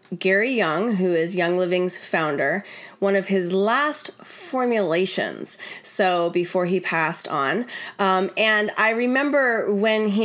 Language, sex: English, female